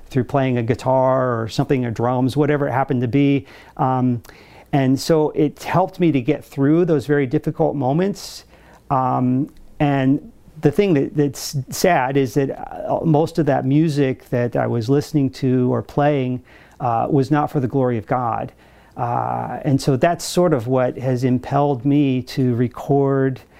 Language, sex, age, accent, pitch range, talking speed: English, male, 40-59, American, 125-150 Hz, 170 wpm